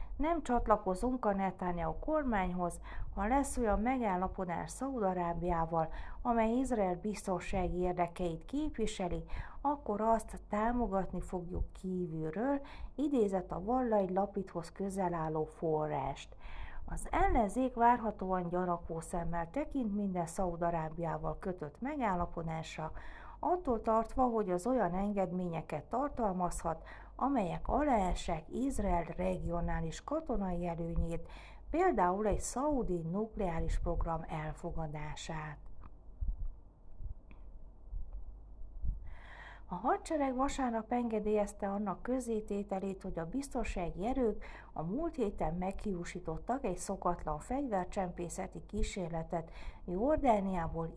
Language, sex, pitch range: Hungarian, female, 165-230 Hz